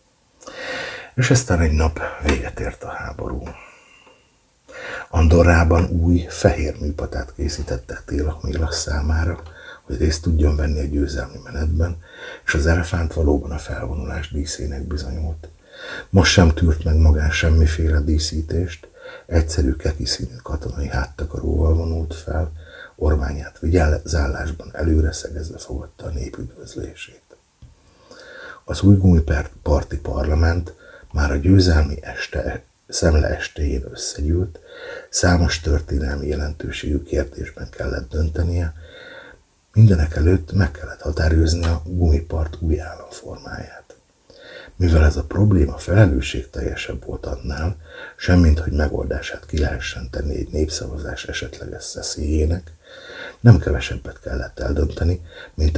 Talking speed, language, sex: 110 wpm, Hungarian, male